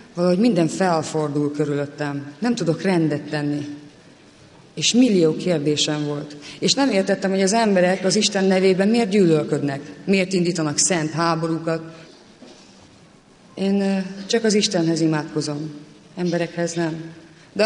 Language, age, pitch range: English, 30-49, 160-185 Hz